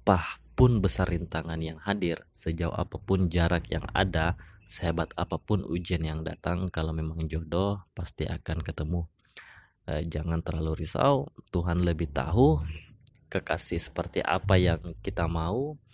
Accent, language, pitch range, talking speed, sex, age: native, Indonesian, 85-100 Hz, 130 wpm, male, 20-39